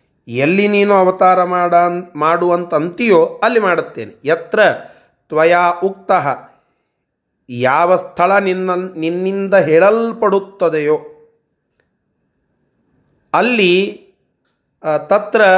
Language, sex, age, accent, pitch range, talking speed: Kannada, male, 30-49, native, 160-205 Hz, 60 wpm